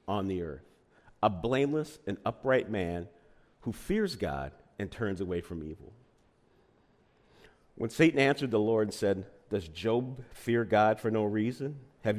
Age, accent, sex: 50-69, American, male